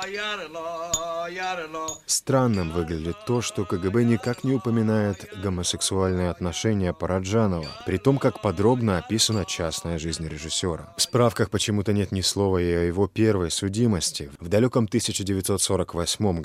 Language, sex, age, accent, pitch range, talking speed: Russian, male, 30-49, native, 85-115 Hz, 120 wpm